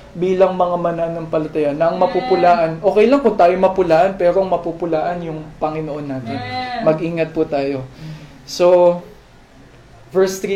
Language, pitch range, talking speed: Filipino, 170-210 Hz, 125 wpm